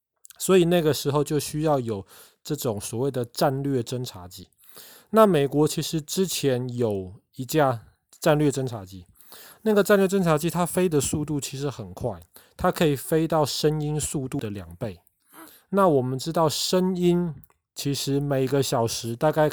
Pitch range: 120-155 Hz